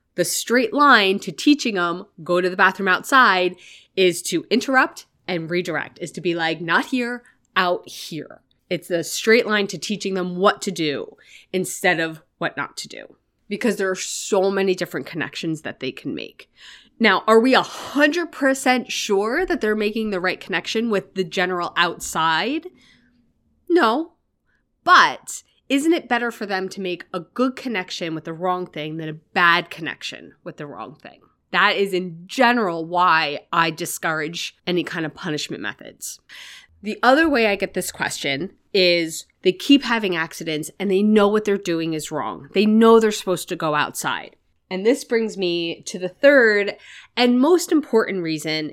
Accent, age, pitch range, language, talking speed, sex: American, 20-39, 170-225 Hz, English, 175 wpm, female